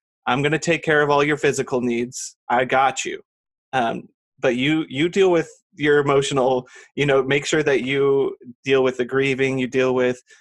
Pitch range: 125-140 Hz